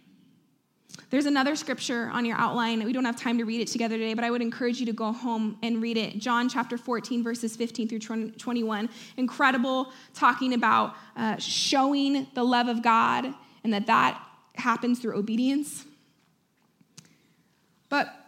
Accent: American